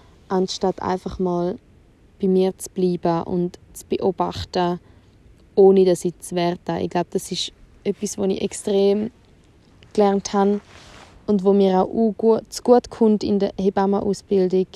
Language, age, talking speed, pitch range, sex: German, 20-39, 145 wpm, 185-220 Hz, female